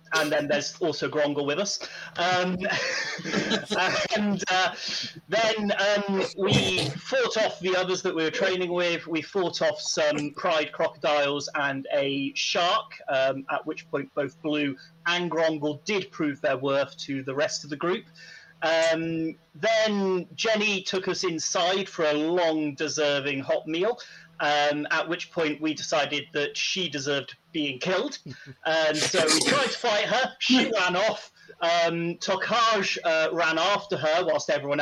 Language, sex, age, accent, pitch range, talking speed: English, male, 30-49, British, 145-180 Hz, 155 wpm